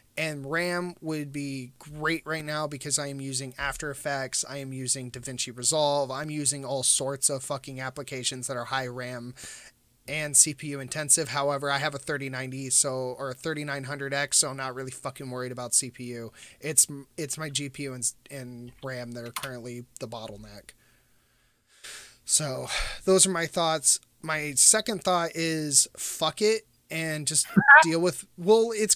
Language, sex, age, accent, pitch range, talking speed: English, male, 20-39, American, 135-185 Hz, 160 wpm